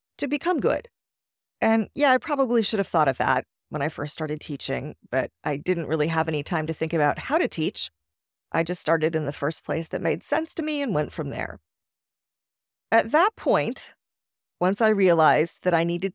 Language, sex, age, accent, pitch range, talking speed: English, female, 30-49, American, 160-225 Hz, 205 wpm